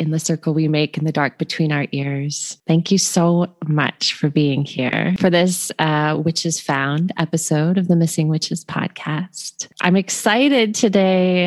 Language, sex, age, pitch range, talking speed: English, female, 20-39, 145-180 Hz, 165 wpm